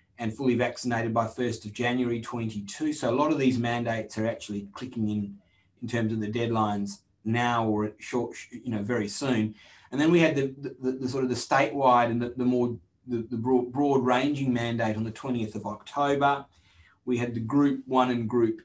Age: 30-49